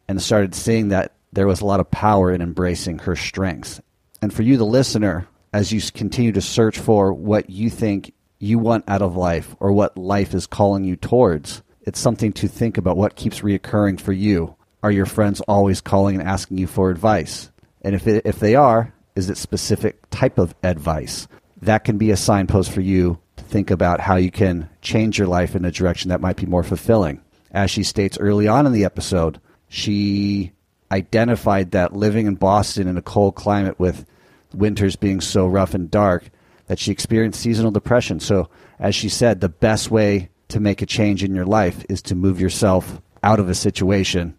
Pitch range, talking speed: 90-105 Hz, 200 wpm